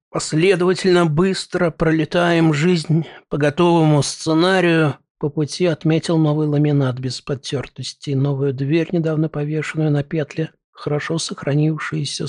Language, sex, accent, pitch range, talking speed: Russian, male, native, 140-170 Hz, 105 wpm